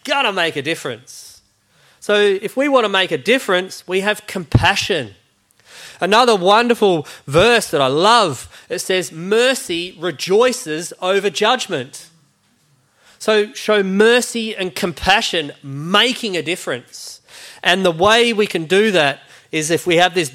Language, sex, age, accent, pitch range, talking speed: English, male, 30-49, Australian, 145-210 Hz, 140 wpm